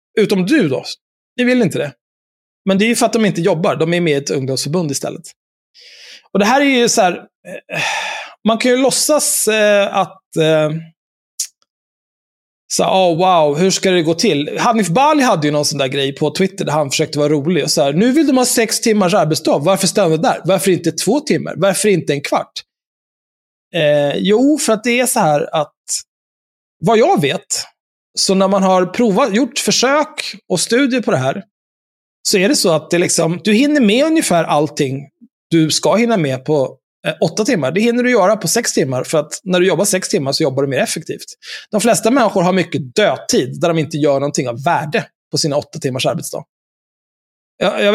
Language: Swedish